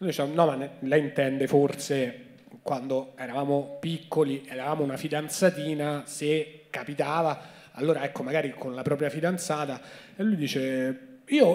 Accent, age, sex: native, 30-49, male